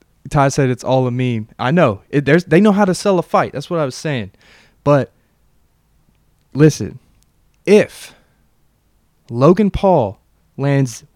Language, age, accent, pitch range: English, 20-39, American, 130-170 Hz